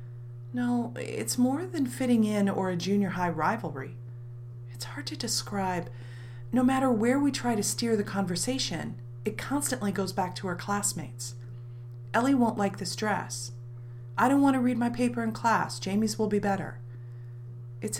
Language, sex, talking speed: English, female, 165 wpm